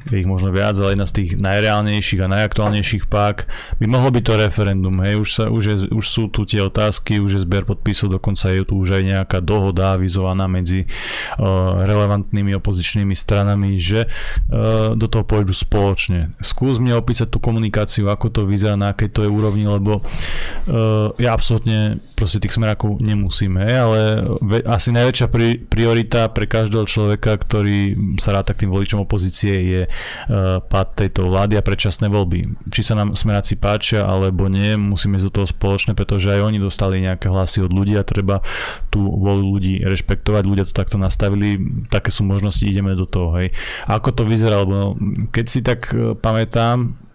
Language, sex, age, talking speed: Slovak, male, 30-49, 175 wpm